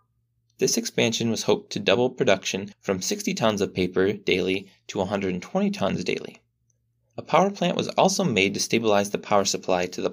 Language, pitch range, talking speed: English, 95-120 Hz, 180 wpm